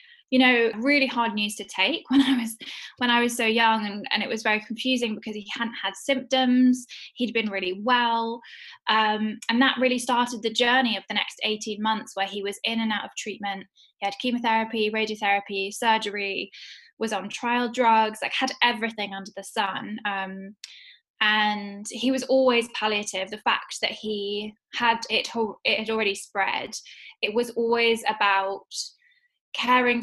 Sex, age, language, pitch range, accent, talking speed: female, 10-29, English, 205-245 Hz, British, 170 wpm